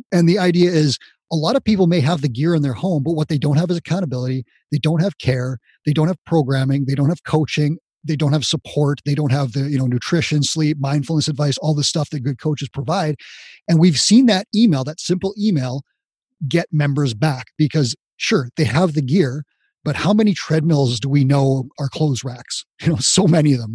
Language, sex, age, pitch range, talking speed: English, male, 30-49, 140-175 Hz, 220 wpm